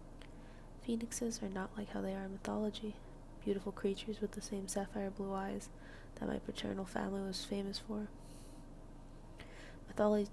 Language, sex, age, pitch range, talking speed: English, female, 20-39, 180-205 Hz, 145 wpm